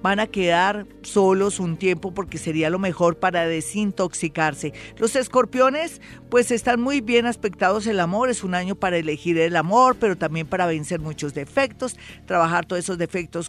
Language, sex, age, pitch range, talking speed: Spanish, female, 40-59, 170-225 Hz, 170 wpm